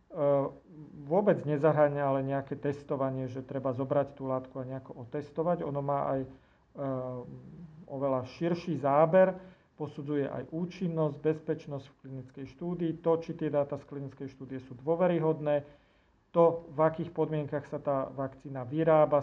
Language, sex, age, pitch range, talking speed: Slovak, male, 40-59, 135-160 Hz, 135 wpm